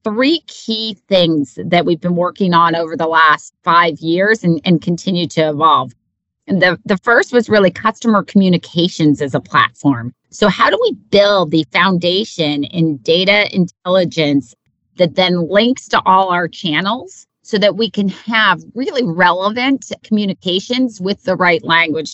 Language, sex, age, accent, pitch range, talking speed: English, female, 30-49, American, 170-210 Hz, 155 wpm